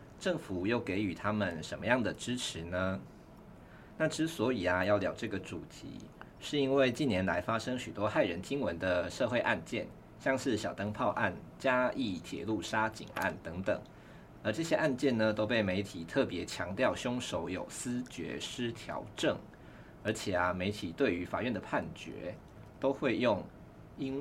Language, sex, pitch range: Chinese, male, 95-125 Hz